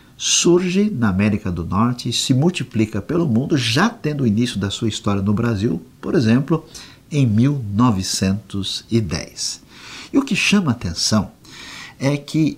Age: 50-69